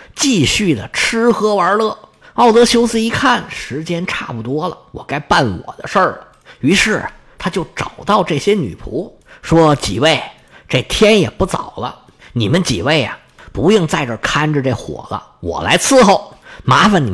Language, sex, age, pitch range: Chinese, male, 50-69, 150-230 Hz